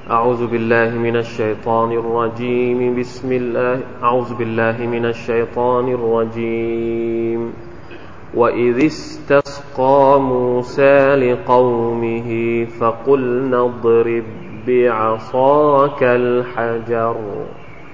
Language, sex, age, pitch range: Thai, male, 30-49, 115-140 Hz